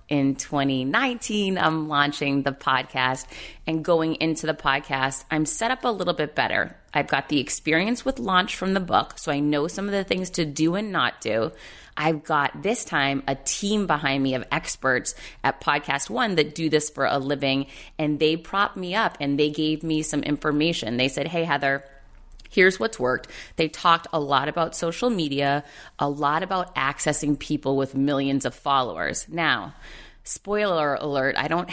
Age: 30-49